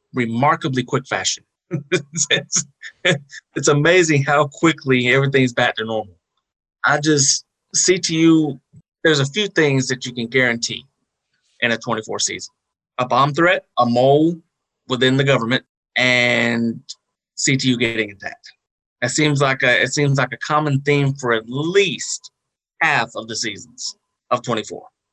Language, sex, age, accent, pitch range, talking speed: English, male, 30-49, American, 120-145 Hz, 150 wpm